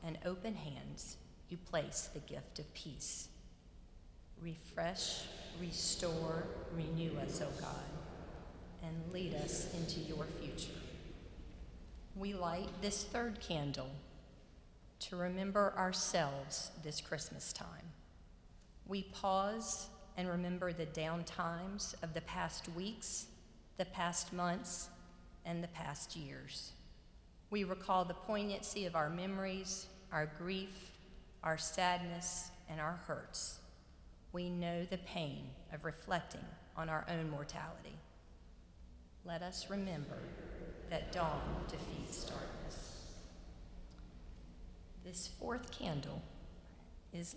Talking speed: 110 wpm